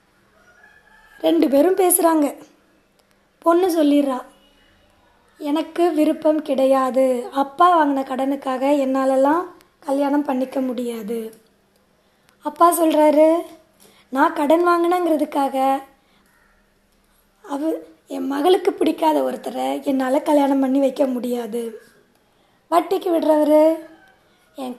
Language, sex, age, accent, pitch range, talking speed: Tamil, female, 20-39, native, 265-330 Hz, 75 wpm